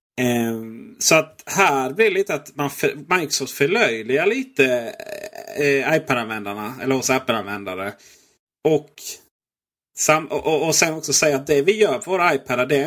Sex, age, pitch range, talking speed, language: male, 30-49, 125-170 Hz, 160 wpm, Swedish